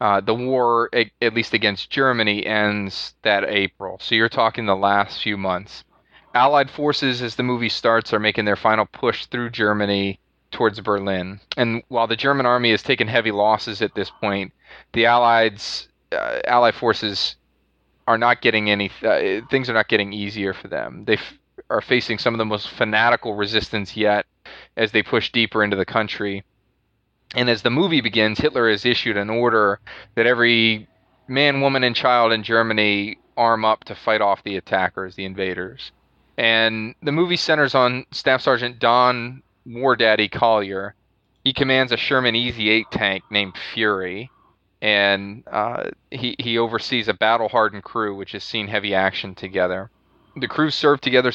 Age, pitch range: 20-39, 100-120 Hz